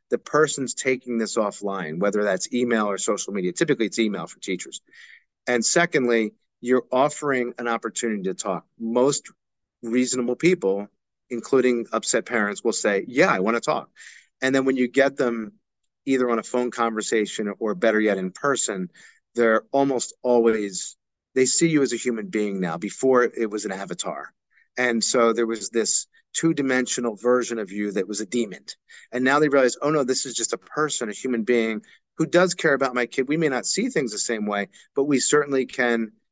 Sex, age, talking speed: male, 40-59, 190 wpm